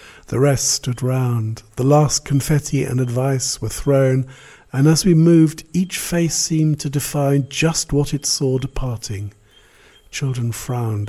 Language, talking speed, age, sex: English, 145 wpm, 60-79, male